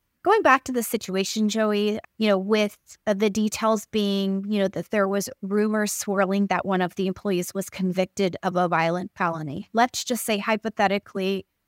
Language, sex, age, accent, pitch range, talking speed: English, female, 30-49, American, 190-220 Hz, 180 wpm